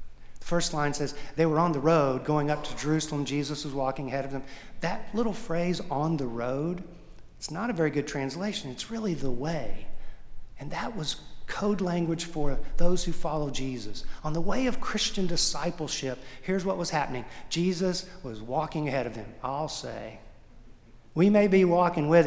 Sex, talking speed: male, 185 wpm